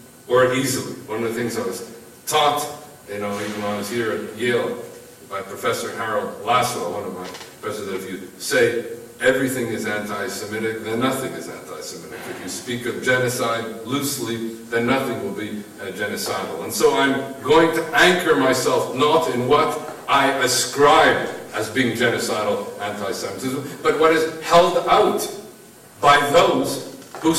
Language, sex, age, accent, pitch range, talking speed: English, male, 50-69, American, 120-150 Hz, 155 wpm